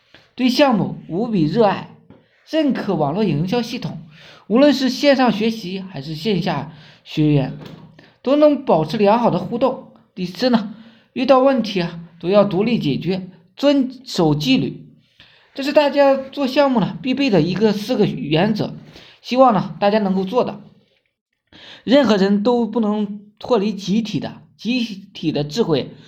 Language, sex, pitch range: Chinese, male, 180-250 Hz